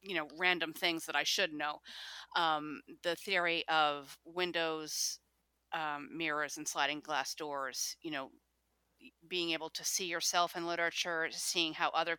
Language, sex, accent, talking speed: English, female, American, 155 wpm